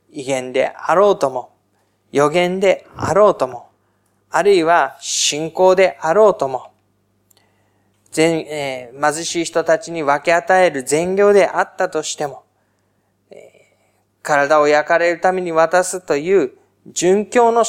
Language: Japanese